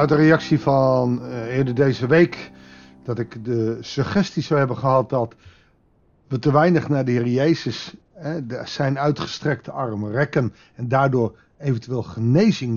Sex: male